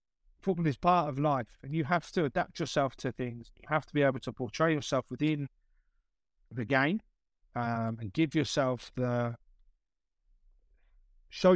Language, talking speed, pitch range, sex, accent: English, 155 wpm, 115-165 Hz, male, British